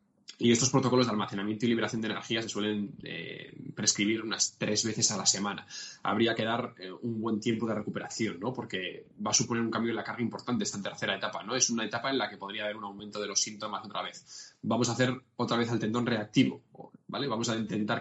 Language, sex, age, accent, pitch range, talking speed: Spanish, male, 10-29, Spanish, 105-125 Hz, 235 wpm